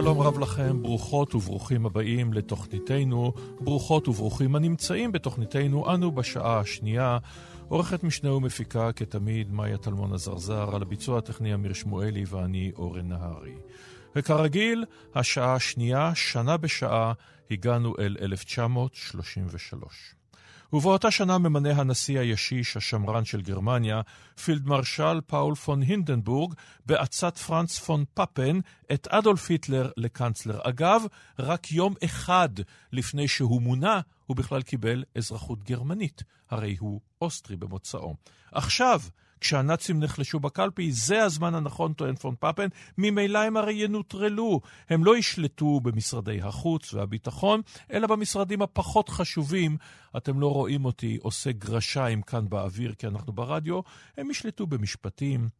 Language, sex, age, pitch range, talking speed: Hebrew, male, 50-69, 110-155 Hz, 120 wpm